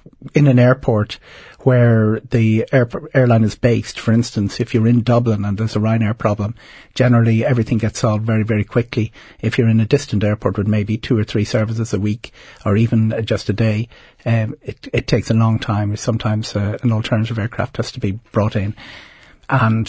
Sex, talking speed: male, 195 wpm